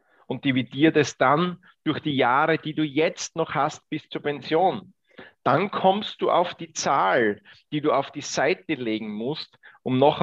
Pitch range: 120-160 Hz